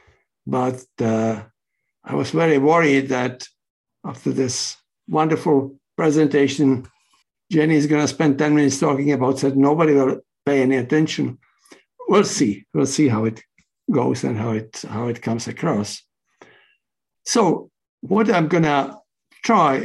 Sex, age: male, 60-79